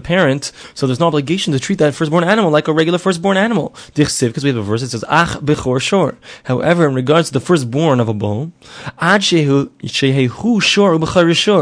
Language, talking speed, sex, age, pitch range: English, 160 wpm, male, 20-39, 130-170 Hz